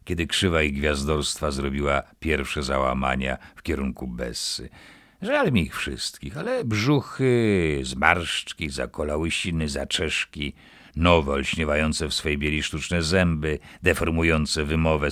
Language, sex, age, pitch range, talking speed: Polish, male, 50-69, 70-85 Hz, 115 wpm